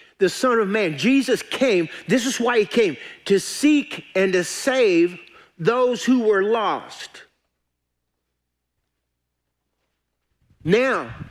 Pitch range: 195-250 Hz